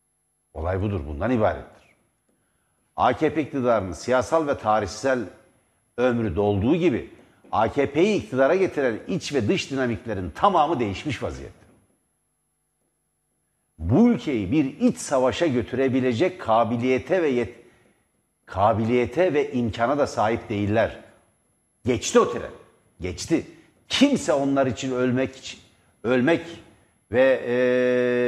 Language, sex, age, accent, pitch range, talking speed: Turkish, male, 60-79, native, 105-135 Hz, 100 wpm